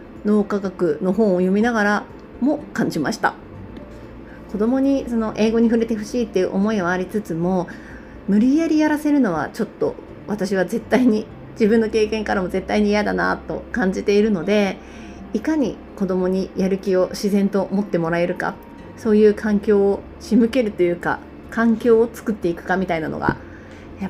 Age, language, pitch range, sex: 30-49, Japanese, 190-250 Hz, female